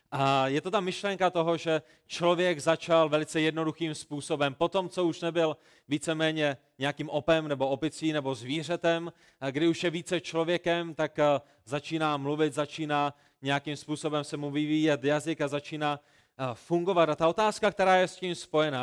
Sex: male